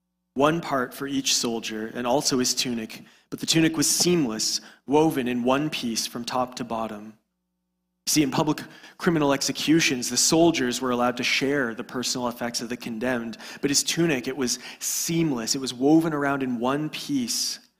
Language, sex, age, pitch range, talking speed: English, male, 30-49, 120-150 Hz, 180 wpm